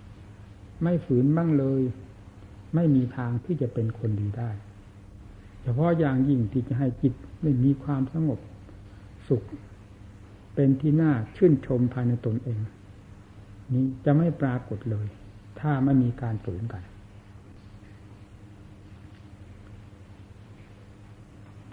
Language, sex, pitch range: Thai, male, 100-140 Hz